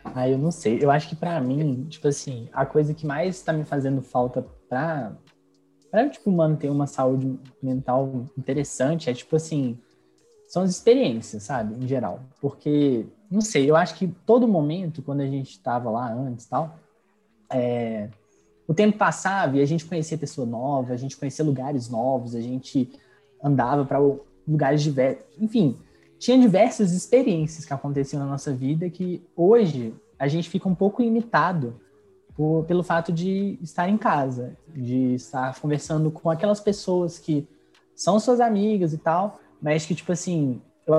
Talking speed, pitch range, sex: 165 wpm, 130-175 Hz, male